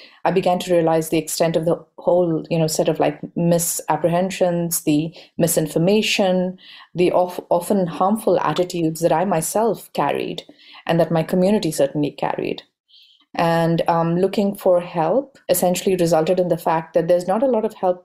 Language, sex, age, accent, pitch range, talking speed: English, female, 30-49, Indian, 165-190 Hz, 165 wpm